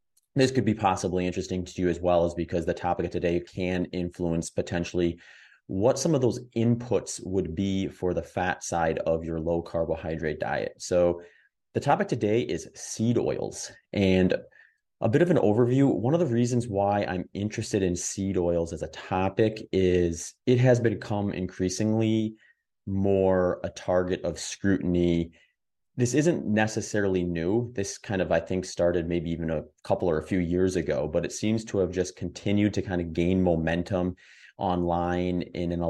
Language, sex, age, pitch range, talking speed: English, male, 30-49, 85-100 Hz, 175 wpm